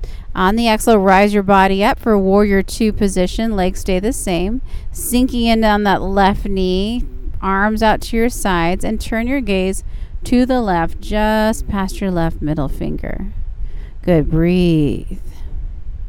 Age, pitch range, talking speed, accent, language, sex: 40-59, 170-225 Hz, 155 wpm, American, English, female